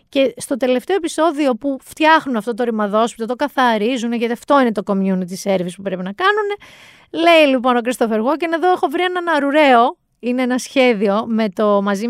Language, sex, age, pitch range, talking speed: Greek, female, 30-49, 205-295 Hz, 180 wpm